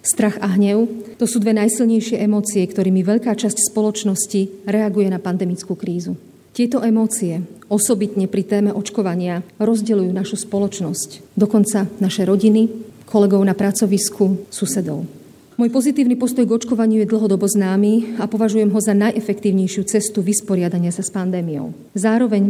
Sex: female